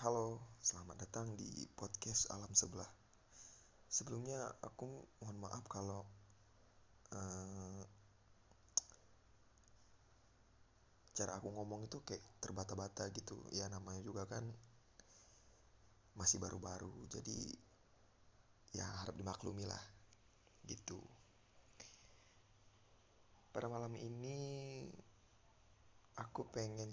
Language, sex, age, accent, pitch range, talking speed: Indonesian, male, 20-39, native, 100-115 Hz, 80 wpm